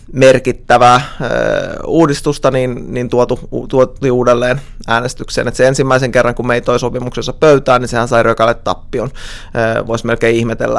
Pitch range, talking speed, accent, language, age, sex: 120-135 Hz, 150 wpm, native, Finnish, 20-39, male